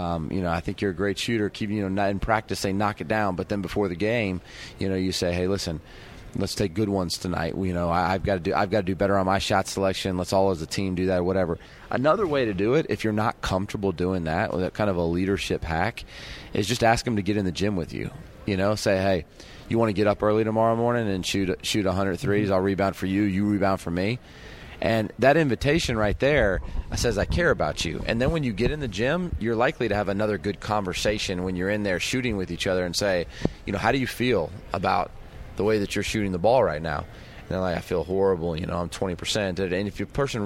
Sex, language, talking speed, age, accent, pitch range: male, English, 265 wpm, 30-49, American, 95-110 Hz